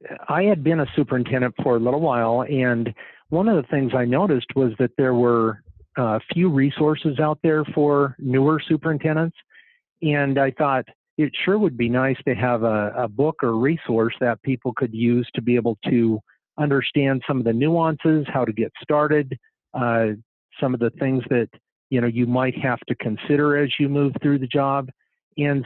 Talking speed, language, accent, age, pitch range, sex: 185 wpm, English, American, 50-69, 120-145 Hz, male